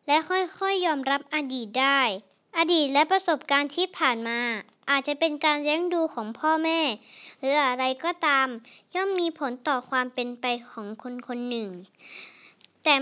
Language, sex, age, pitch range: Thai, male, 20-39, 245-325 Hz